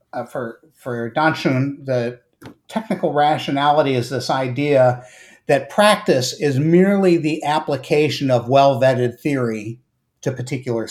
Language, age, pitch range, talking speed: English, 50-69, 130-160 Hz, 115 wpm